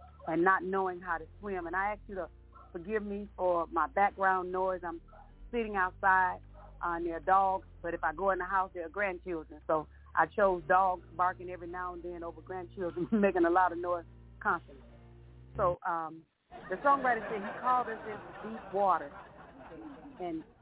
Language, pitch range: English, 175-215 Hz